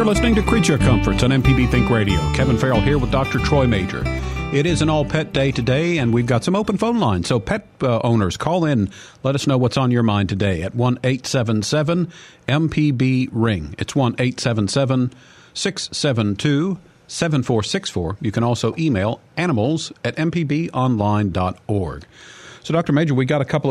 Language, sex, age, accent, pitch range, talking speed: English, male, 50-69, American, 115-145 Hz, 160 wpm